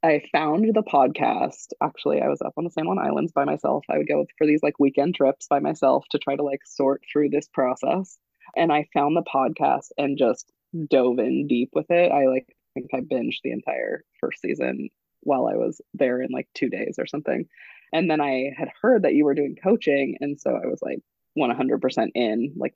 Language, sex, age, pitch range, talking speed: English, female, 20-39, 130-165 Hz, 220 wpm